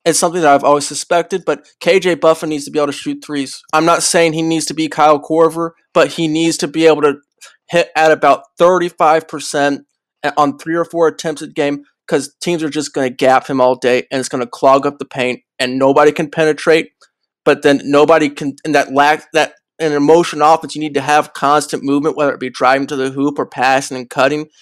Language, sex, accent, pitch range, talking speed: English, male, American, 135-155 Hz, 230 wpm